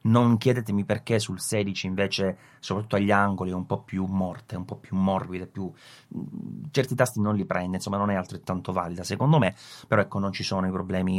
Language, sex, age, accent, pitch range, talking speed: Italian, male, 30-49, native, 95-125 Hz, 205 wpm